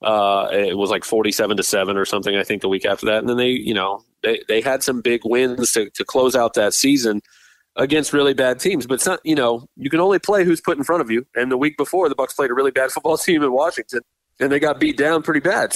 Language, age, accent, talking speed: English, 30-49, American, 280 wpm